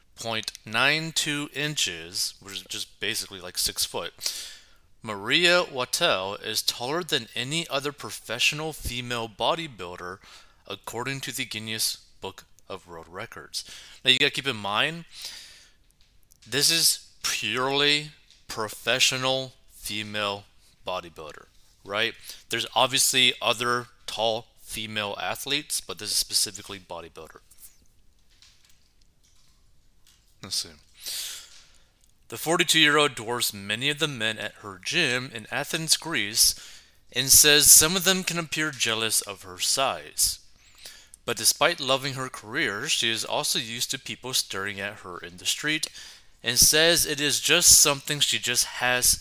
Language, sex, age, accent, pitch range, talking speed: English, male, 30-49, American, 100-145 Hz, 125 wpm